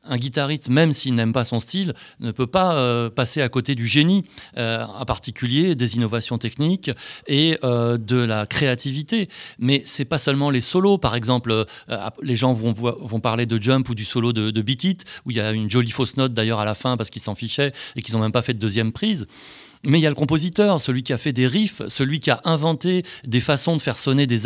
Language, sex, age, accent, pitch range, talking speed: French, male, 30-49, French, 120-155 Hz, 245 wpm